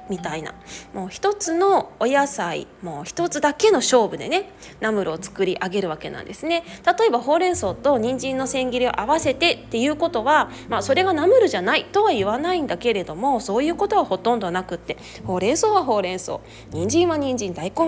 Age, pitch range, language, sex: 20-39, 205-335 Hz, Japanese, female